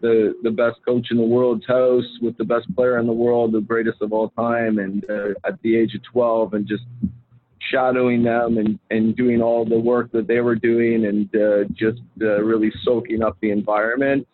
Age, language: 40-59, English